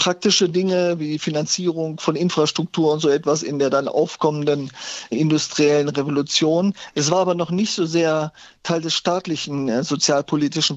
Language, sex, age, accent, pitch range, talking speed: German, male, 40-59, German, 145-170 Hz, 145 wpm